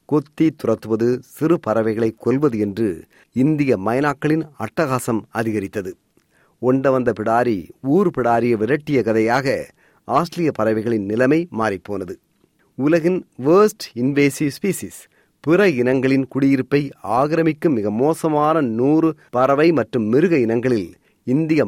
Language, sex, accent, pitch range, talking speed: Tamil, male, native, 115-155 Hz, 100 wpm